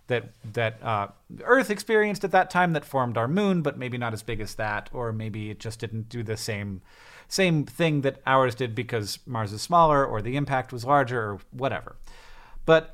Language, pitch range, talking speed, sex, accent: English, 115-140 Hz, 205 wpm, male, American